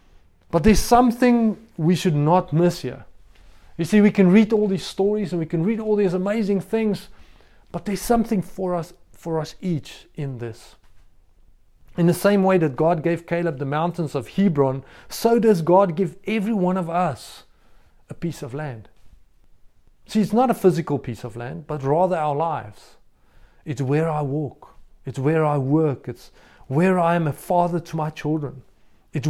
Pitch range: 145-185 Hz